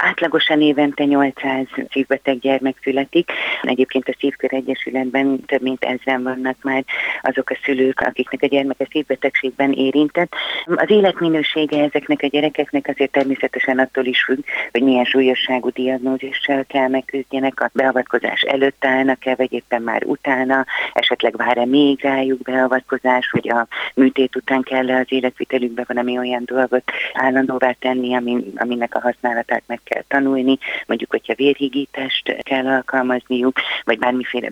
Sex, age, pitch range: female, 30-49, 125-140 Hz